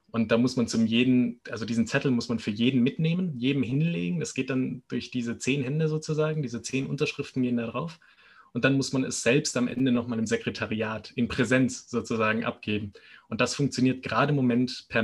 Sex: male